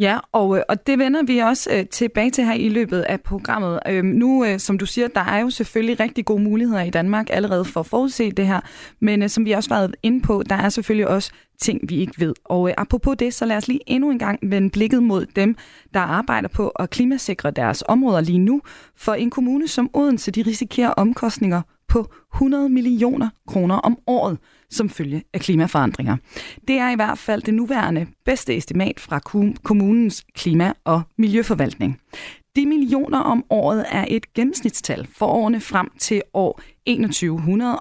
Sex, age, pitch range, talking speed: female, 20-39, 190-245 Hz, 185 wpm